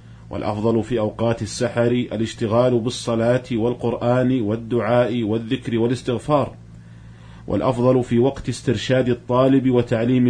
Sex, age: male, 40-59